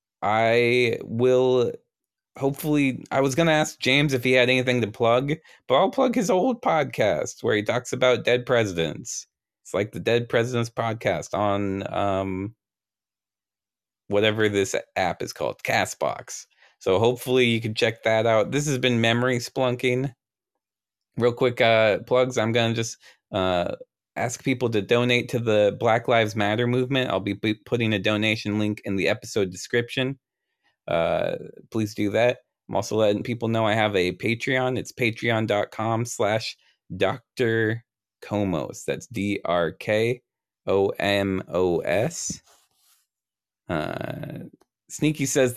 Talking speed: 135 wpm